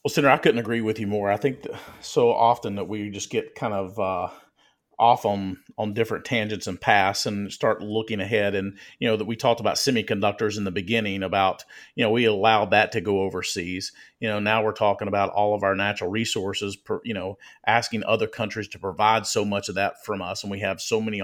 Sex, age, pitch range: male, 40-59, 100-120 Hz